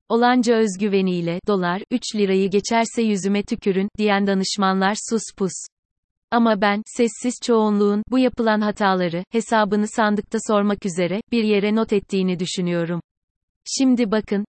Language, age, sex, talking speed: Turkish, 30-49, female, 125 wpm